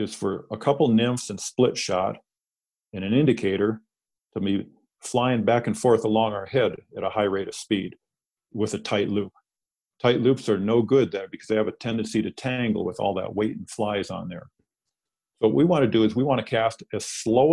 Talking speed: 220 wpm